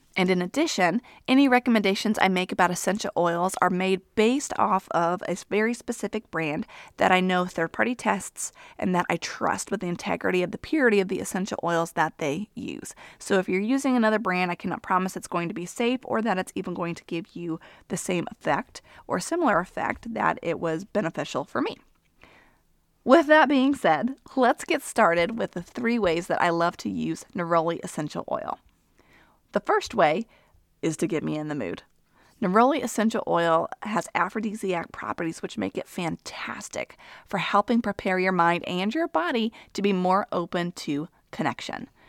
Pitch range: 170-225 Hz